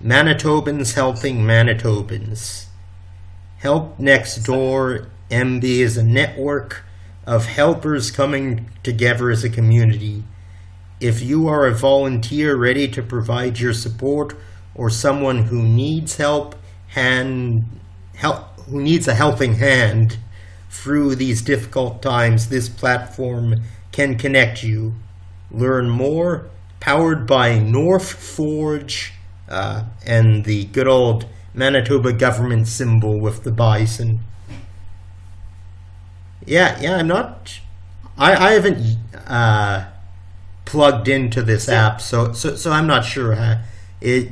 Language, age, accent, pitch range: English, 50-69, American, 100-135 Hz